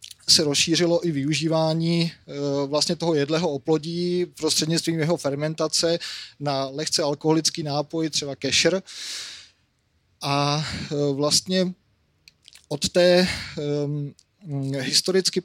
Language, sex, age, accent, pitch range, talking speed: Czech, male, 30-49, native, 140-160 Hz, 85 wpm